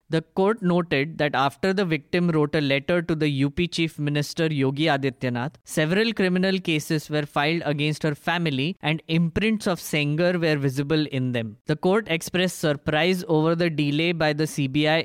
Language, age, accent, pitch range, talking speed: English, 20-39, Indian, 145-175 Hz, 170 wpm